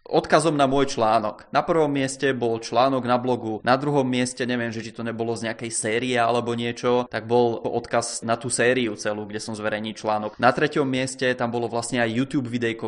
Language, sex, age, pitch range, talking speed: Czech, male, 20-39, 115-135 Hz, 205 wpm